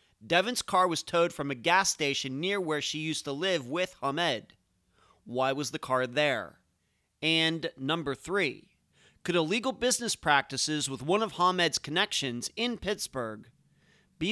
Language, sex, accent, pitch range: English, male, American, 135-185 Hz